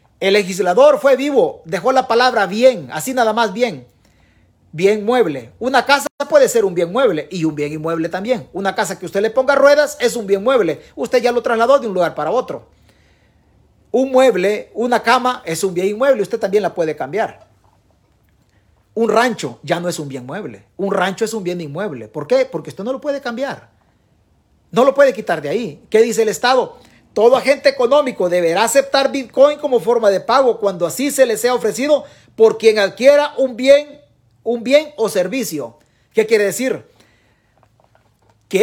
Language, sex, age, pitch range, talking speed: Spanish, male, 40-59, 180-255 Hz, 195 wpm